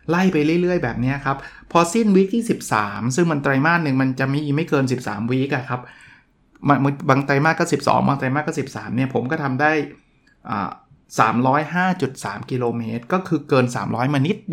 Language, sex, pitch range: Thai, male, 125-160 Hz